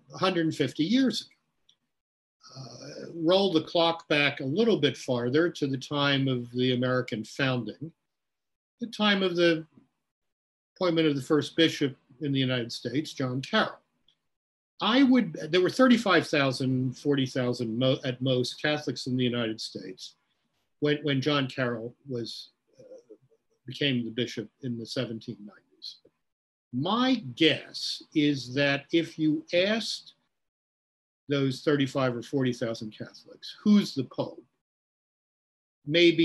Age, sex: 50-69, male